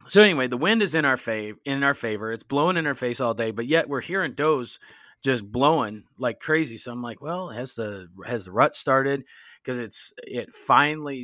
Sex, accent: male, American